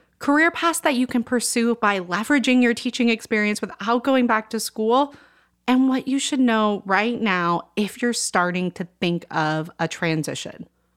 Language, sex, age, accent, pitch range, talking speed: English, female, 30-49, American, 175-250 Hz, 170 wpm